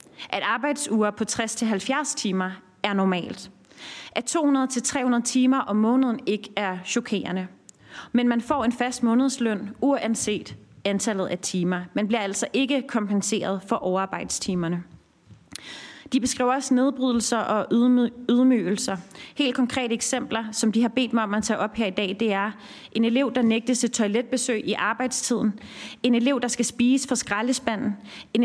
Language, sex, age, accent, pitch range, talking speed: Danish, female, 30-49, native, 215-260 Hz, 150 wpm